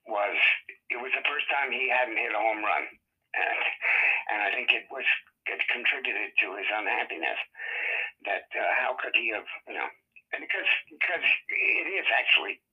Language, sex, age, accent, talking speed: English, male, 60-79, American, 175 wpm